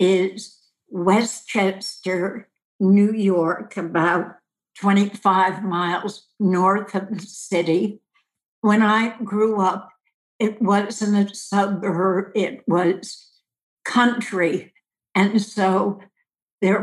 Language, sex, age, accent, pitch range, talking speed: English, female, 60-79, American, 190-215 Hz, 90 wpm